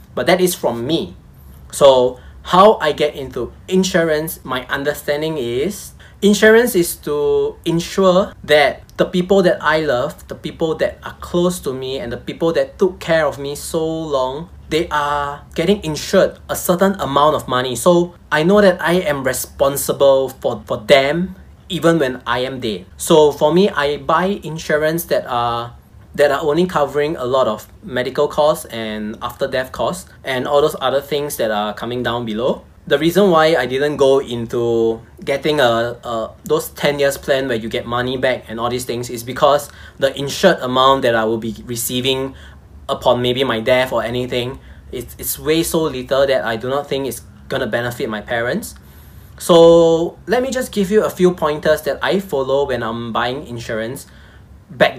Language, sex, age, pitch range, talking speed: English, male, 20-39, 120-160 Hz, 180 wpm